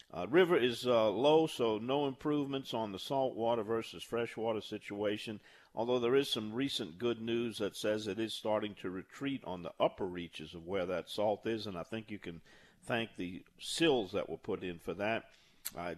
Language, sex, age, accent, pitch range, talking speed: English, male, 50-69, American, 100-125 Hz, 195 wpm